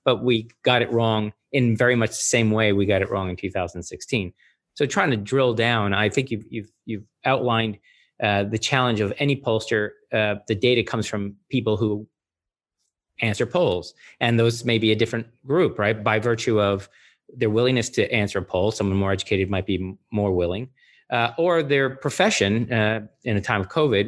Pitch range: 100-120 Hz